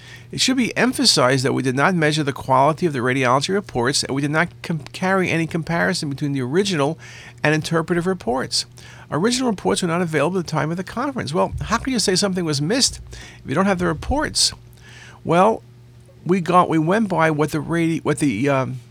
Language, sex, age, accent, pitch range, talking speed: English, male, 50-69, American, 120-180 Hz, 195 wpm